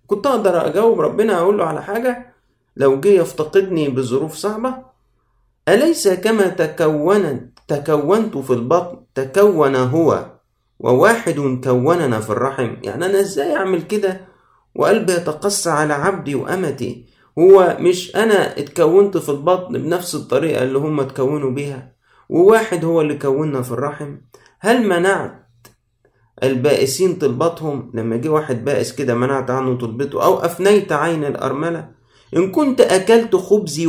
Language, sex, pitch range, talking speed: Arabic, male, 125-180 Hz, 130 wpm